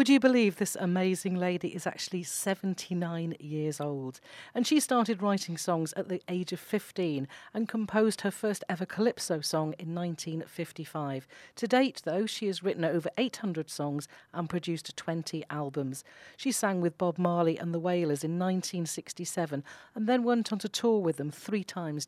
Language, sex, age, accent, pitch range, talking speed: English, female, 40-59, British, 165-215 Hz, 170 wpm